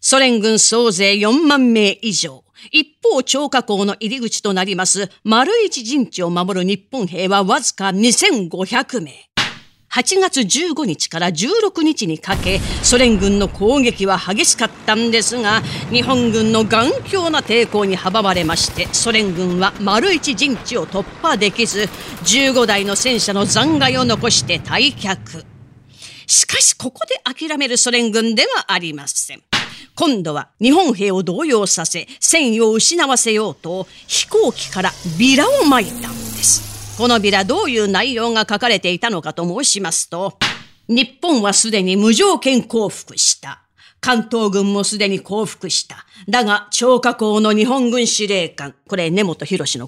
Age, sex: 40-59, female